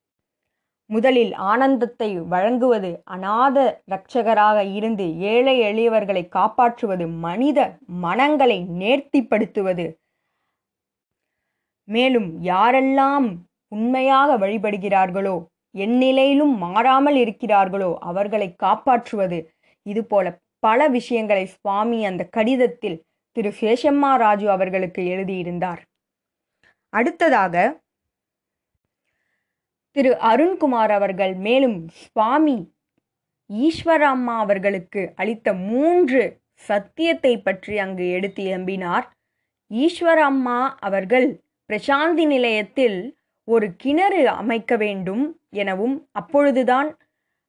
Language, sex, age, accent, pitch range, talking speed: Tamil, female, 20-39, native, 195-265 Hz, 60 wpm